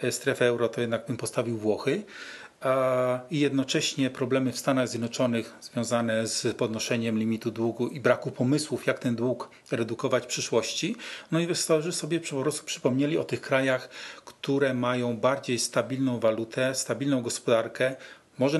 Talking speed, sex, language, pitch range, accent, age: 140 wpm, male, Polish, 120-140 Hz, native, 40-59